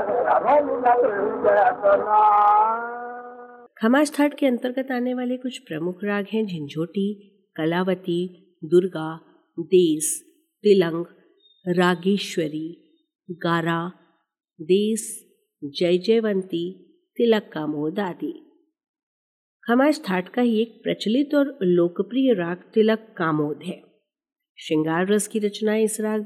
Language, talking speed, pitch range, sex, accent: Hindi, 90 wpm, 175-245 Hz, female, native